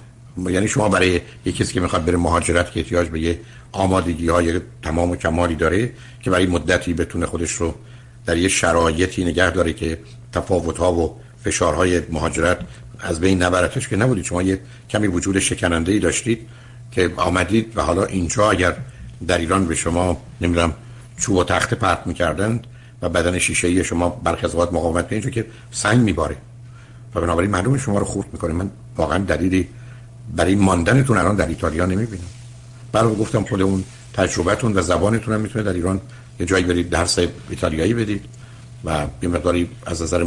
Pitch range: 85-115 Hz